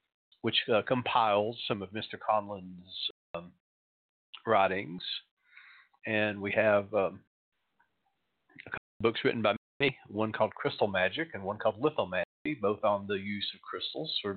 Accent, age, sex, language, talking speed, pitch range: American, 40-59, male, English, 145 wpm, 100-125 Hz